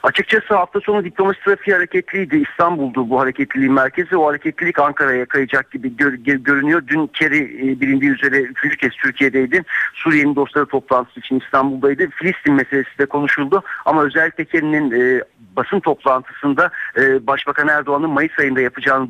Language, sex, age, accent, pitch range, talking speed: Turkish, male, 60-79, native, 130-160 Hz, 145 wpm